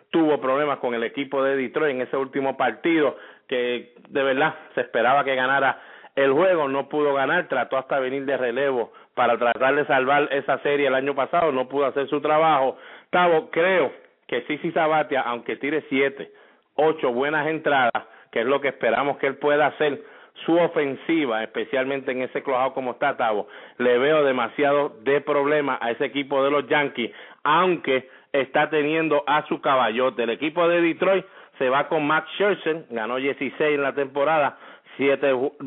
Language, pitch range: English, 130-150 Hz